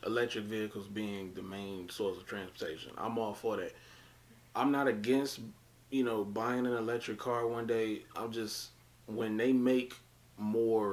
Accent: American